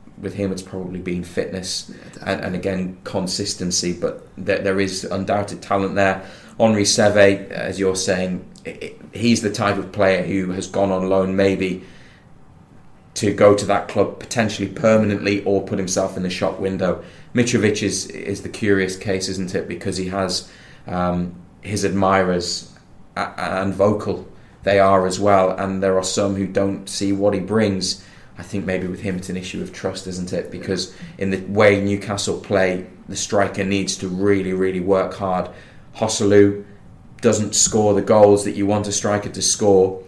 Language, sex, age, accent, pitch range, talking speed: English, male, 20-39, British, 95-100 Hz, 175 wpm